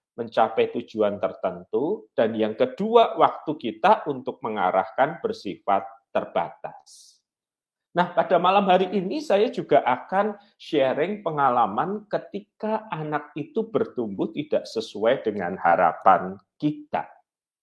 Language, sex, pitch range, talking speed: Malay, male, 145-205 Hz, 105 wpm